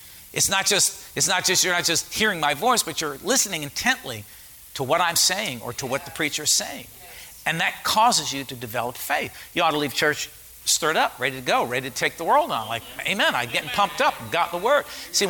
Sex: male